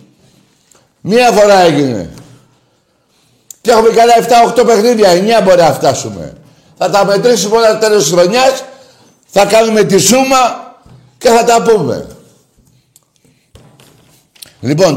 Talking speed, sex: 115 wpm, male